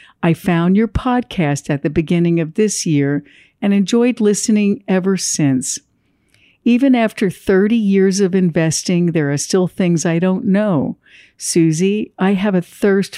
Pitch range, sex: 165-200 Hz, female